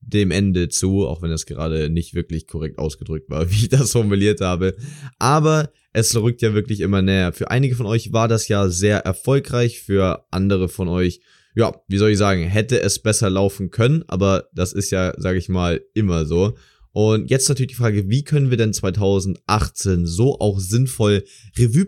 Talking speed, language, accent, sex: 190 wpm, German, German, male